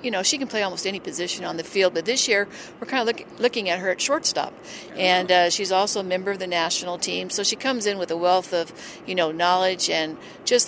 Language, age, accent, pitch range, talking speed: English, 50-69, American, 180-215 Hz, 260 wpm